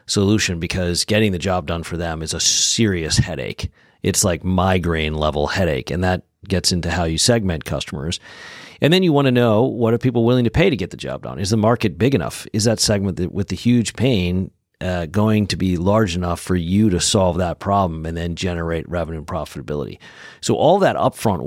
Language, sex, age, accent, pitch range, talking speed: English, male, 40-59, American, 90-110 Hz, 215 wpm